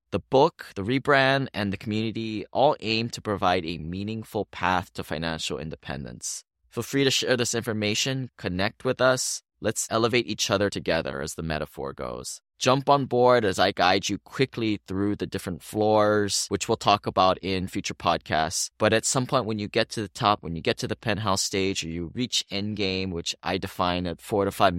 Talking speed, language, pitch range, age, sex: 200 wpm, English, 90-115 Hz, 20-39, male